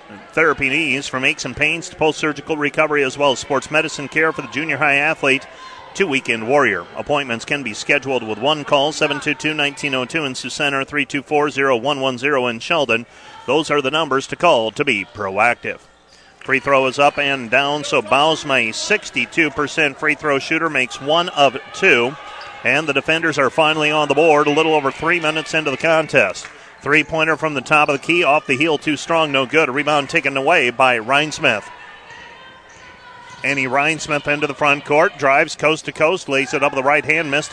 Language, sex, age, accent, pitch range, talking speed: English, male, 40-59, American, 135-155 Hz, 185 wpm